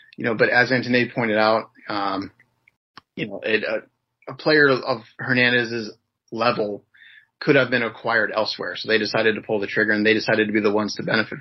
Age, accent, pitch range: 30-49, American, 110-140 Hz